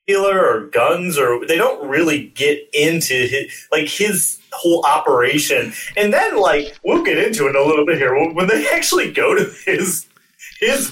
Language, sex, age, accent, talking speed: English, male, 30-49, American, 165 wpm